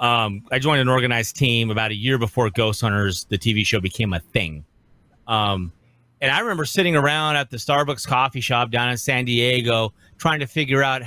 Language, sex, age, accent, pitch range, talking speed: English, male, 30-49, American, 120-170 Hz, 195 wpm